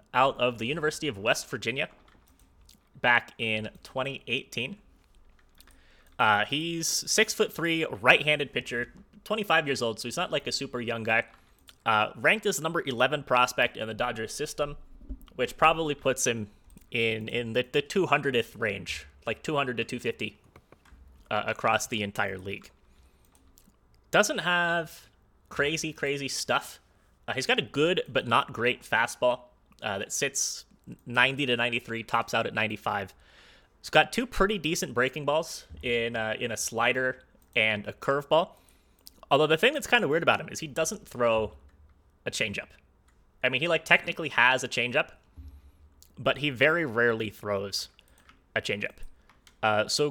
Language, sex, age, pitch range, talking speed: English, male, 20-39, 105-150 Hz, 150 wpm